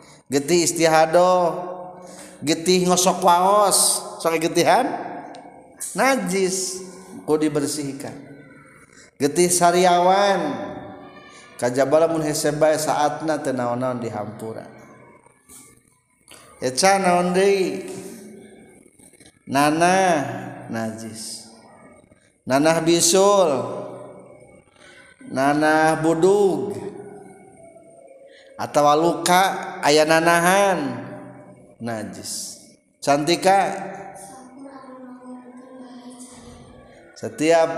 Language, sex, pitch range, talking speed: Indonesian, male, 140-190 Hz, 55 wpm